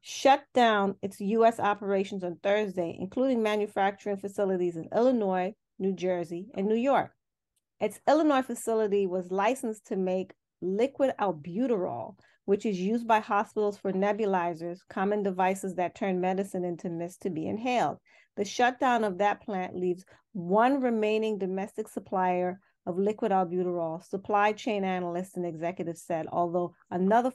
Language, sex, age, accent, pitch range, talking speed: English, female, 30-49, American, 185-215 Hz, 140 wpm